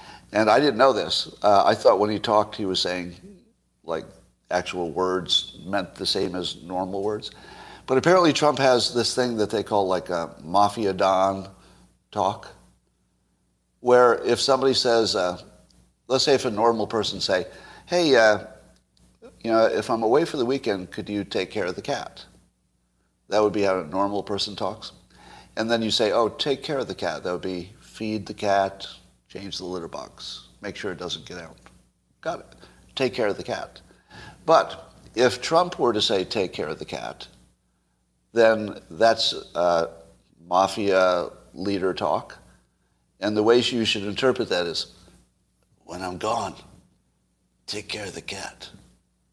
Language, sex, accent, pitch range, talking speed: English, male, American, 85-115 Hz, 170 wpm